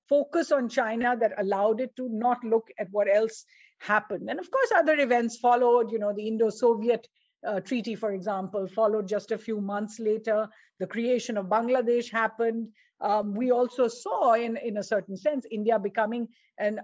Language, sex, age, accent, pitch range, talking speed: English, female, 50-69, Indian, 205-250 Hz, 180 wpm